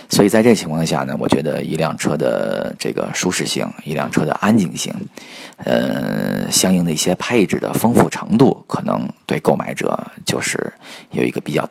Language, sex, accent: Chinese, male, native